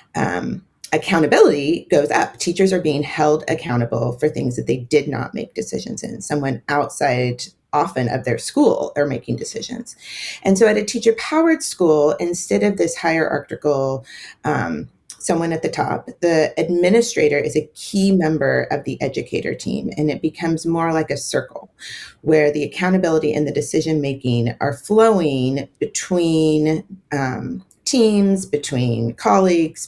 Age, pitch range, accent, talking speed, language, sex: 30-49, 140-185 Hz, American, 145 wpm, English, female